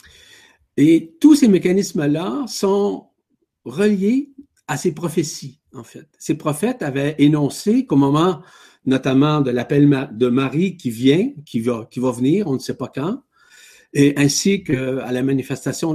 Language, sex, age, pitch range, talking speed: French, male, 50-69, 130-200 Hz, 145 wpm